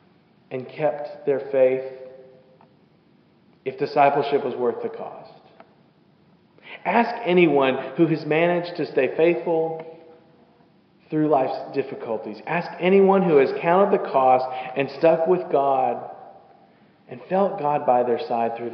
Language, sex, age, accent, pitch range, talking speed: English, male, 40-59, American, 130-170 Hz, 125 wpm